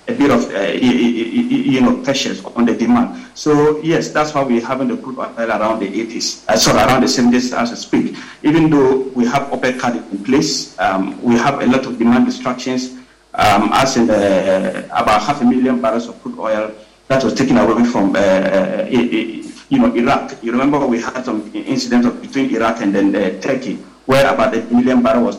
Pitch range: 120-165 Hz